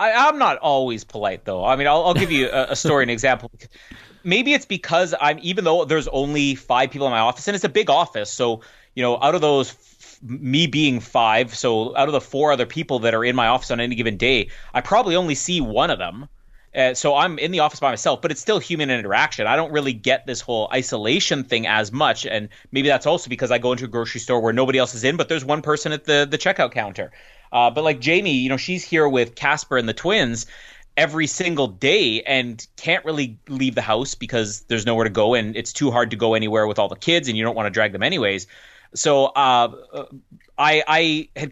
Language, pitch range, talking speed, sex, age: English, 120-155 Hz, 240 wpm, male, 30-49